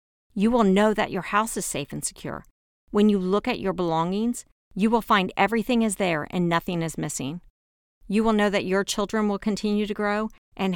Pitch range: 180-230 Hz